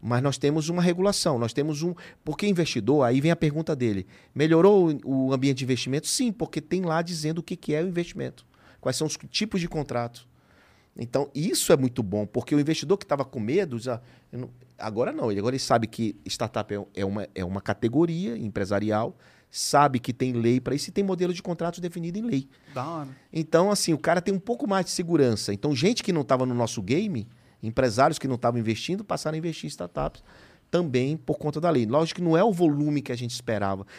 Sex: male